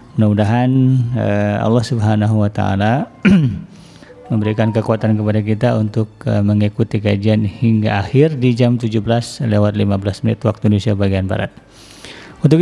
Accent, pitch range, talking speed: native, 105-135 Hz, 120 wpm